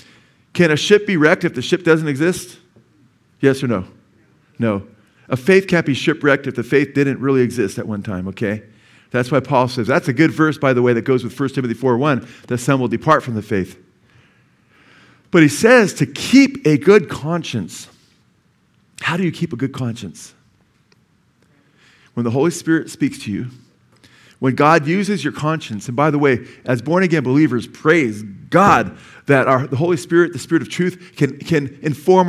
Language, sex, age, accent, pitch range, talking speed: English, male, 40-59, American, 130-175 Hz, 190 wpm